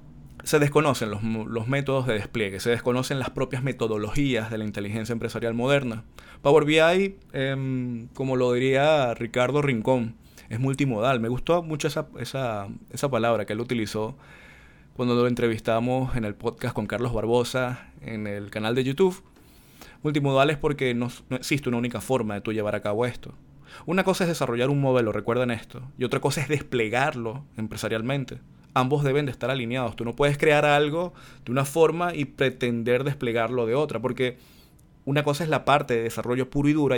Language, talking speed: Spanish, 175 wpm